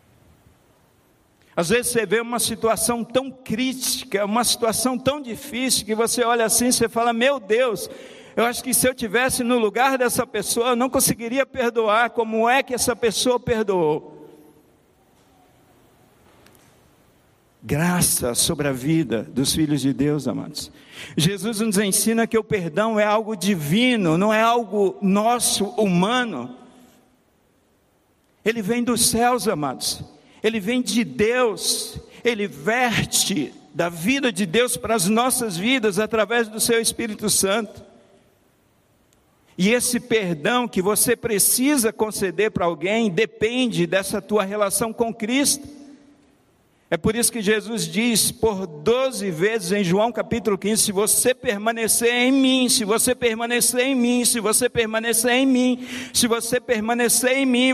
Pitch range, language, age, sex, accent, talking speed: 205-245 Hz, Portuguese, 50-69, male, Brazilian, 140 wpm